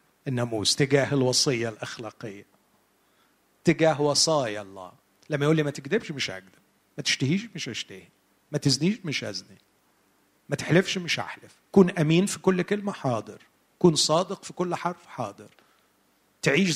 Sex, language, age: male, Arabic, 40-59